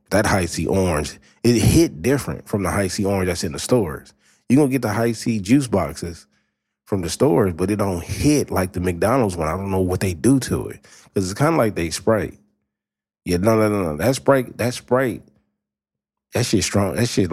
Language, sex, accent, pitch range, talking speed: English, male, American, 80-115 Hz, 220 wpm